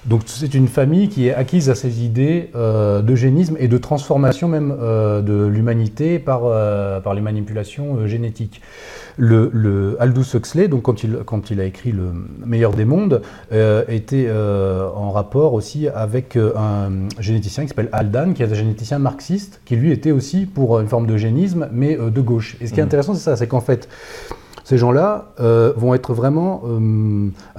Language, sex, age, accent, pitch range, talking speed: French, male, 30-49, French, 110-140 Hz, 185 wpm